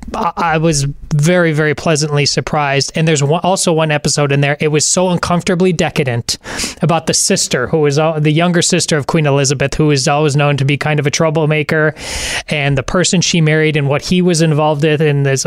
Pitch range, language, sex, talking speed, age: 150-185 Hz, English, male, 200 wpm, 20-39